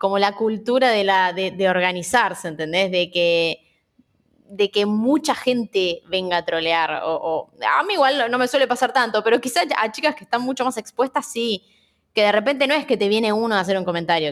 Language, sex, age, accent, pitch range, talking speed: Spanish, female, 20-39, Argentinian, 185-255 Hz, 215 wpm